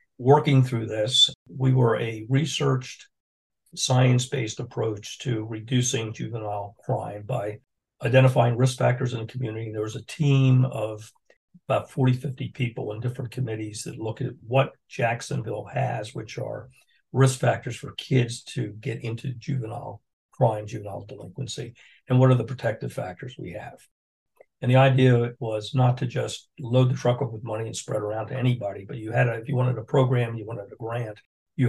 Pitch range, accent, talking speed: 115-130 Hz, American, 175 wpm